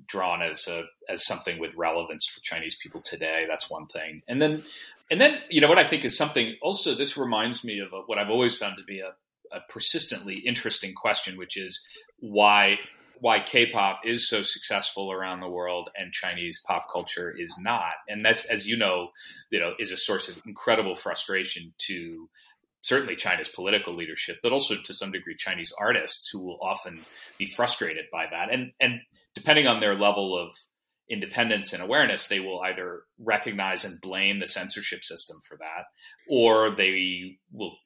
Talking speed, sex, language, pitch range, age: 180 wpm, male, English, 95-115 Hz, 30-49